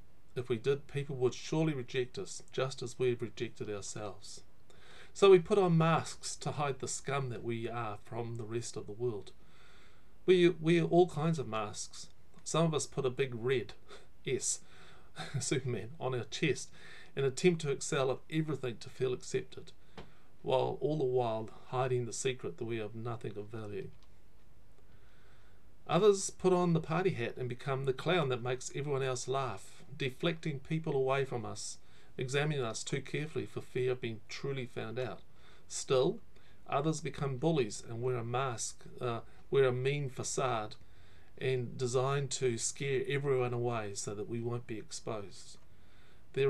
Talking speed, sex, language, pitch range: 165 wpm, male, English, 115-140 Hz